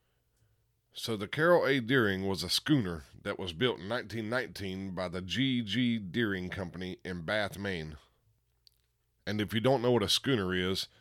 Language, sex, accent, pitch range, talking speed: English, male, American, 95-115 Hz, 170 wpm